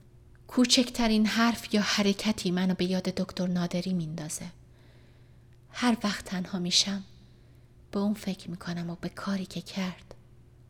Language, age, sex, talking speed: Persian, 30-49, female, 140 wpm